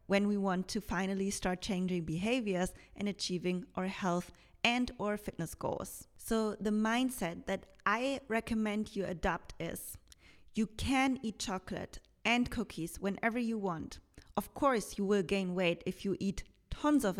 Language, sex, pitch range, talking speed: English, female, 190-235 Hz, 155 wpm